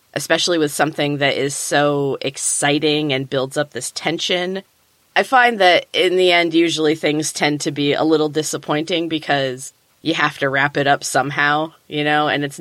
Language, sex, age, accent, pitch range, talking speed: English, female, 20-39, American, 145-175 Hz, 180 wpm